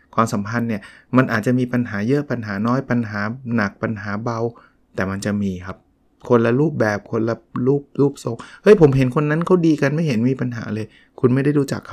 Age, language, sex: 20-39, Thai, male